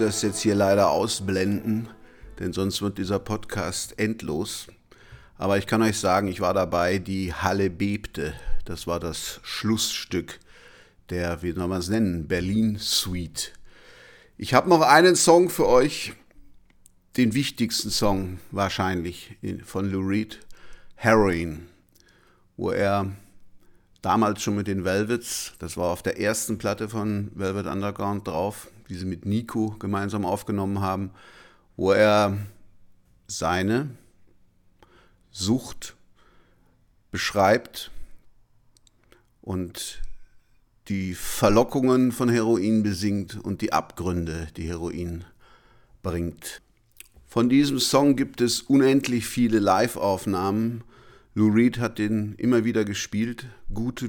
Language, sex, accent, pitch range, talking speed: German, male, German, 95-115 Hz, 115 wpm